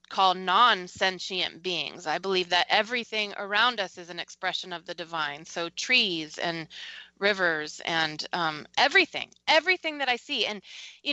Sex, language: female, English